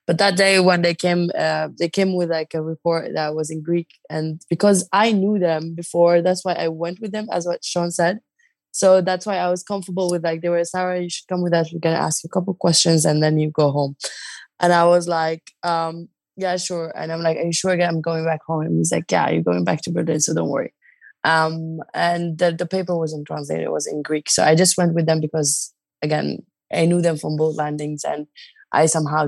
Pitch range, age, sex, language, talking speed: 150-175 Hz, 20-39, female, English, 245 wpm